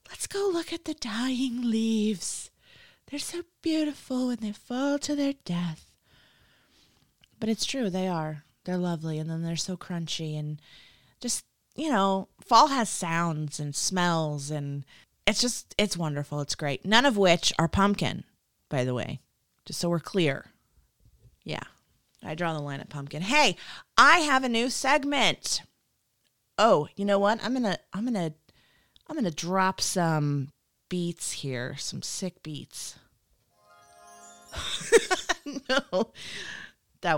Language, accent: English, American